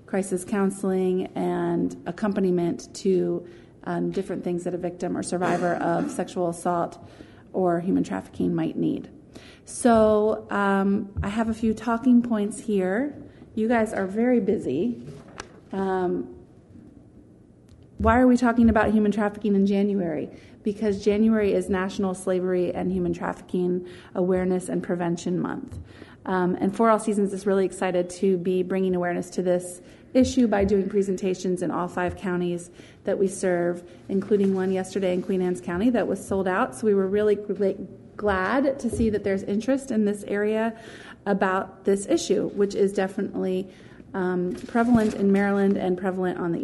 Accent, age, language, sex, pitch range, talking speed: American, 30-49, English, female, 185-210 Hz, 155 wpm